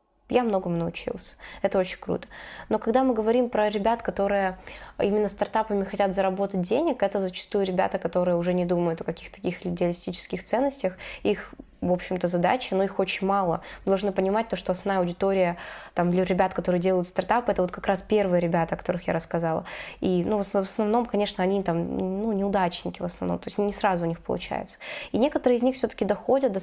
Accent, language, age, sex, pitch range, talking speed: native, Russian, 20-39, female, 175-205 Hz, 195 wpm